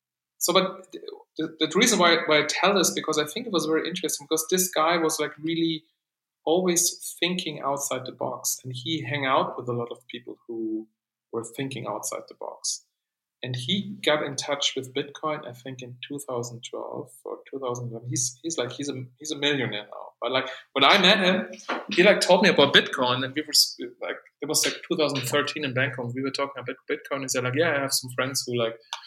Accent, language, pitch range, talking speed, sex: German, English, 125-165 Hz, 215 wpm, male